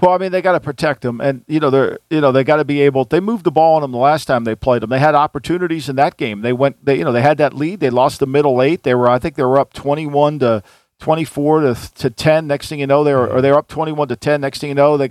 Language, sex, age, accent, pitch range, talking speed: English, male, 50-69, American, 130-155 Hz, 325 wpm